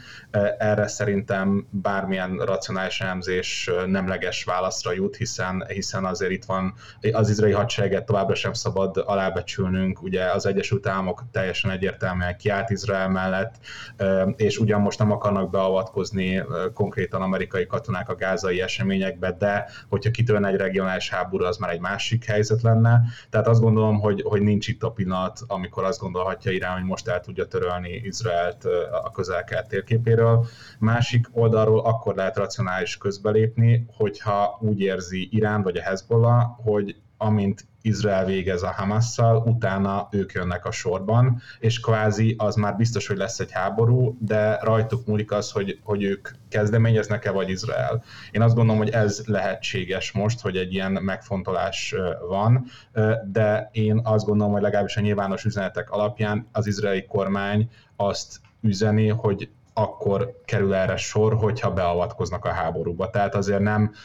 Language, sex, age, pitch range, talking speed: Hungarian, male, 30-49, 95-110 Hz, 145 wpm